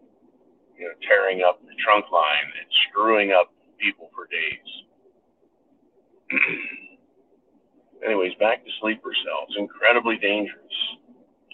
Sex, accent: male, American